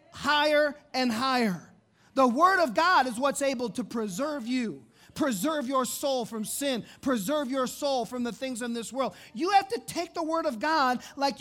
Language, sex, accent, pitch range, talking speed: English, male, American, 240-295 Hz, 190 wpm